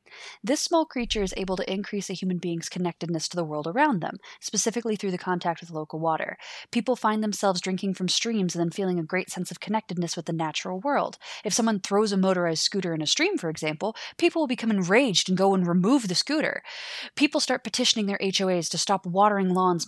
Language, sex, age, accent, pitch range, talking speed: English, female, 20-39, American, 175-210 Hz, 215 wpm